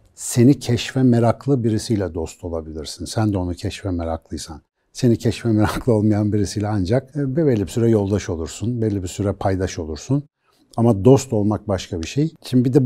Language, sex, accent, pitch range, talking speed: Turkish, male, native, 95-130 Hz, 175 wpm